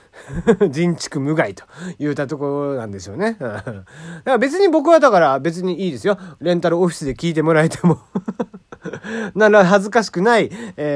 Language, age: Japanese, 40-59